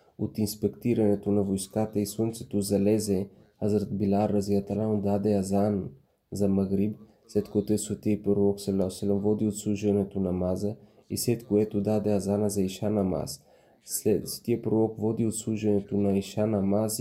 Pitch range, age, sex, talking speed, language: 100-110 Hz, 20-39, male, 140 wpm, Bulgarian